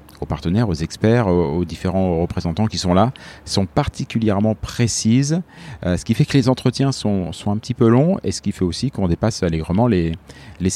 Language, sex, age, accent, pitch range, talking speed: French, male, 40-59, French, 90-115 Hz, 200 wpm